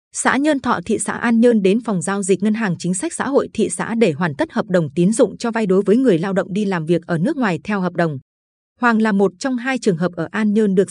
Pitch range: 180-225 Hz